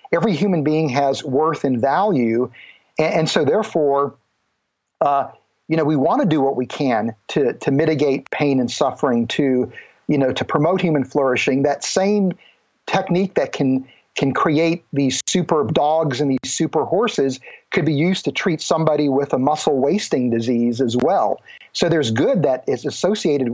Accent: American